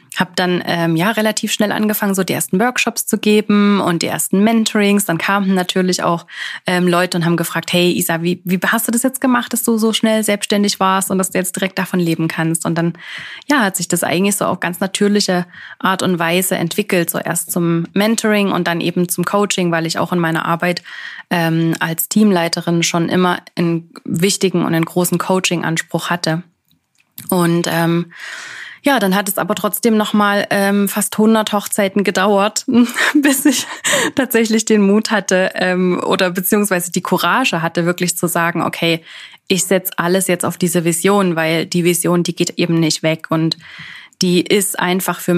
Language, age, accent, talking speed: German, 20-39, German, 190 wpm